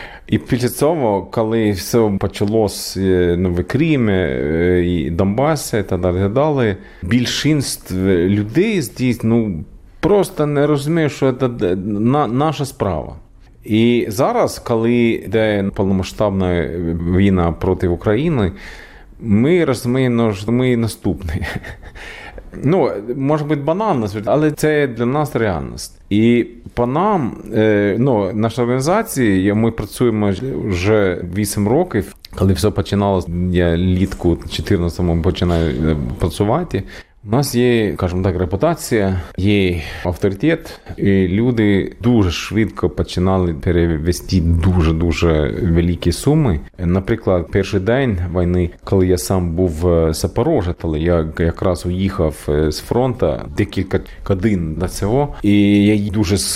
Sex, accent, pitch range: male, native, 90-120 Hz